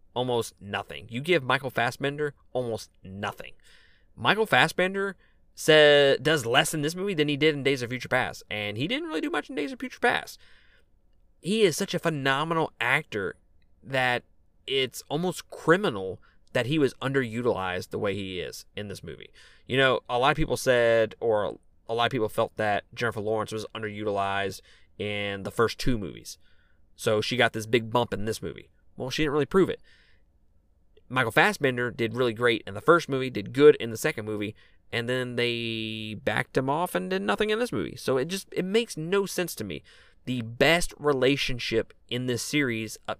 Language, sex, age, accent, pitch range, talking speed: English, male, 20-39, American, 105-145 Hz, 190 wpm